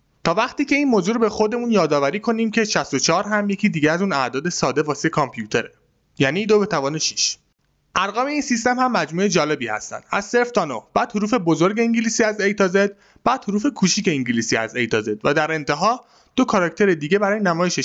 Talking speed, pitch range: 205 wpm, 145-210 Hz